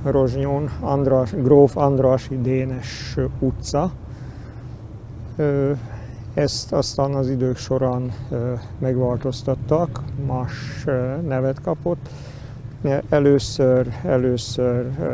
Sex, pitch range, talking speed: male, 125-140 Hz, 65 wpm